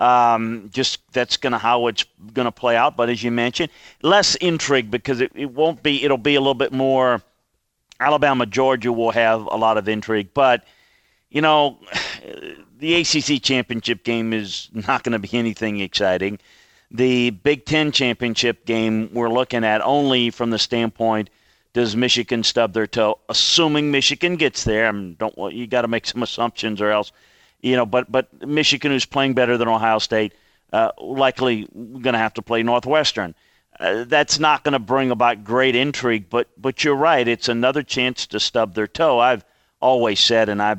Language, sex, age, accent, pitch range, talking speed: English, male, 40-59, American, 110-130 Hz, 190 wpm